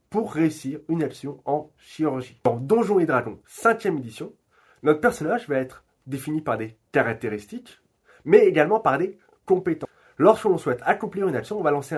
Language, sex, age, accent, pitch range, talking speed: French, male, 30-49, French, 130-190 Hz, 170 wpm